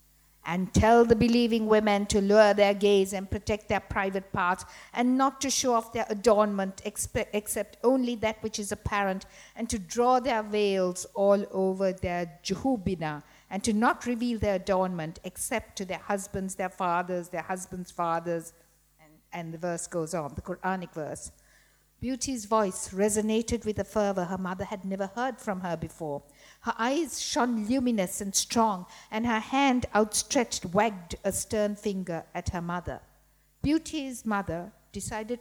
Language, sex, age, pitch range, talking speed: English, female, 60-79, 185-225 Hz, 160 wpm